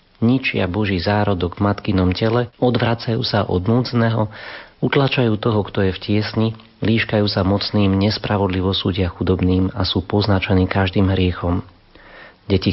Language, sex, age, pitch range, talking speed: Slovak, male, 40-59, 95-115 Hz, 130 wpm